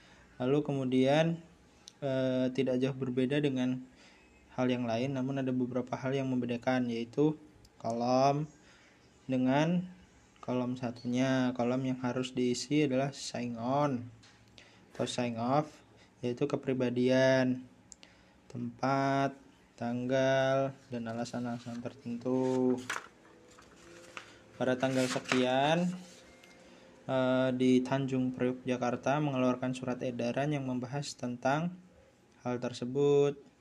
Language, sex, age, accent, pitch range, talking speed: Indonesian, male, 20-39, native, 120-135 Hz, 95 wpm